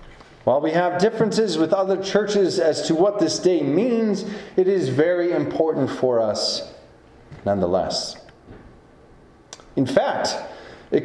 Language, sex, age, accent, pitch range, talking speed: English, male, 40-59, American, 125-170 Hz, 125 wpm